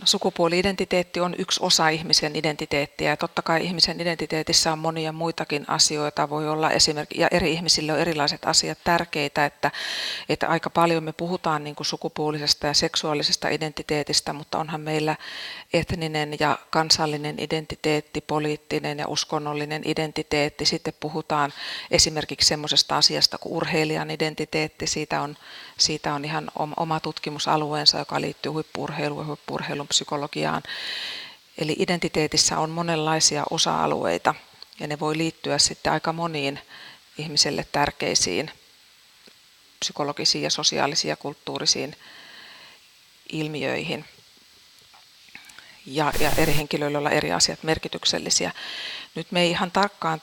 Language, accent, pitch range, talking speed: Finnish, native, 150-165 Hz, 120 wpm